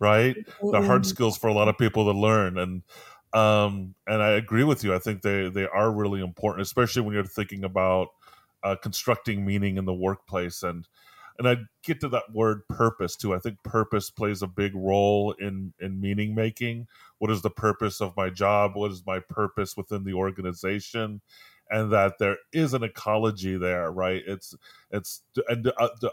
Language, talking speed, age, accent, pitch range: English, 185 wpm, 30-49, American, 95-110 Hz